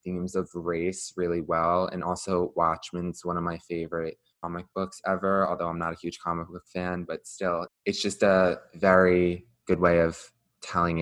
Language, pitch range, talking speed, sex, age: English, 85-95 Hz, 180 wpm, male, 20-39